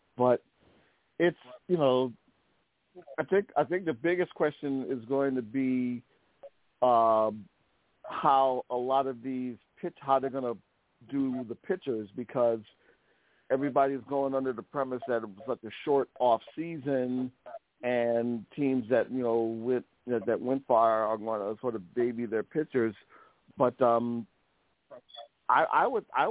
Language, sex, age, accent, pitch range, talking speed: English, male, 50-69, American, 115-140 Hz, 145 wpm